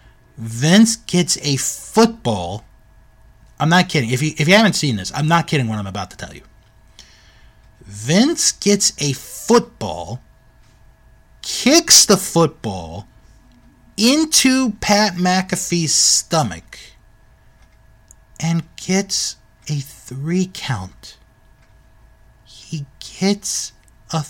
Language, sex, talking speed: English, male, 100 wpm